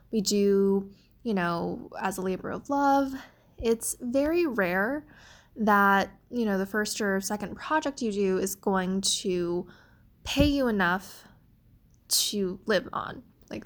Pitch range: 195-245 Hz